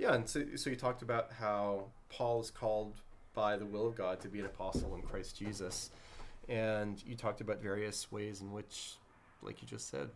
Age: 30-49